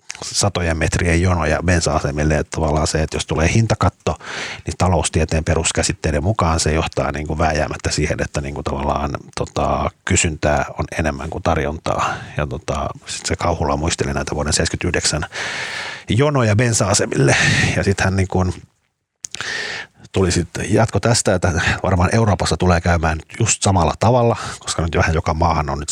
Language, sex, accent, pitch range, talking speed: Finnish, male, native, 80-100 Hz, 150 wpm